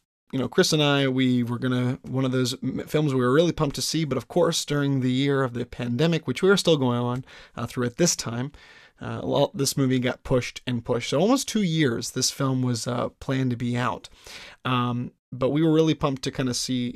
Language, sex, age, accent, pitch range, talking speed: English, male, 30-49, American, 125-155 Hz, 245 wpm